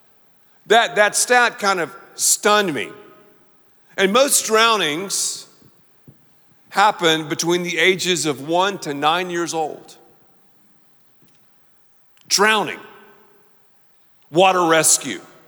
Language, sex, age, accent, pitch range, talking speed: English, male, 50-69, American, 155-200 Hz, 90 wpm